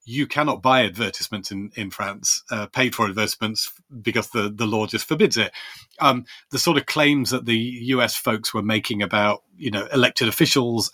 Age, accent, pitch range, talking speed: 40-59, British, 105-130 Hz, 185 wpm